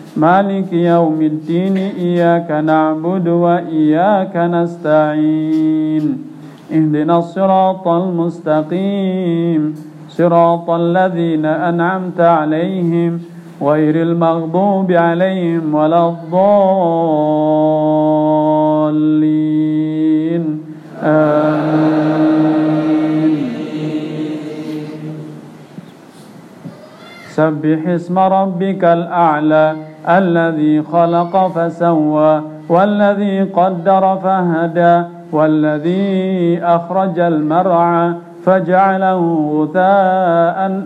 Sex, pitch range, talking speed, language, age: male, 155-185 Hz, 50 wpm, Indonesian, 50-69